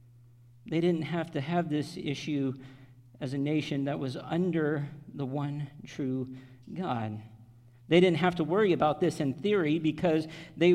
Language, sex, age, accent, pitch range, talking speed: English, male, 50-69, American, 130-165 Hz, 155 wpm